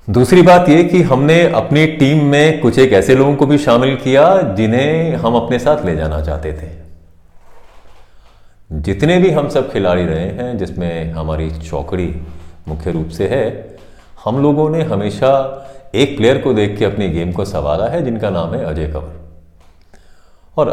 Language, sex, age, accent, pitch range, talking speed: Hindi, male, 40-59, native, 80-120 Hz, 170 wpm